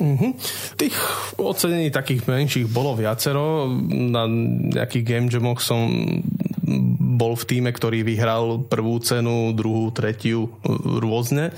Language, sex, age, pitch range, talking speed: Slovak, male, 20-39, 110-125 Hz, 110 wpm